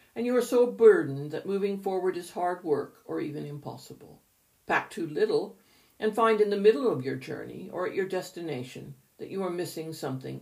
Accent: American